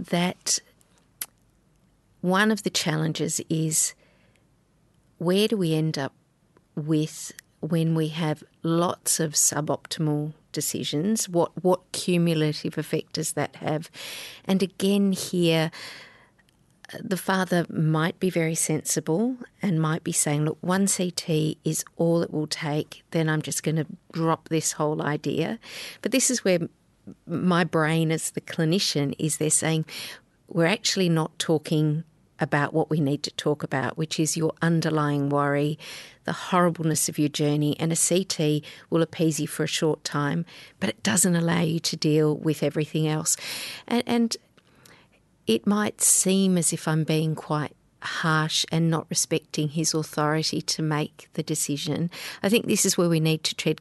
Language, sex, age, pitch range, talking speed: English, female, 50-69, 155-175 Hz, 155 wpm